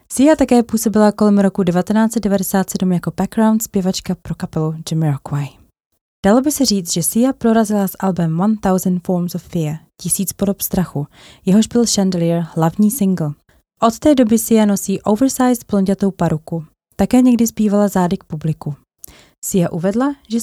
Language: Czech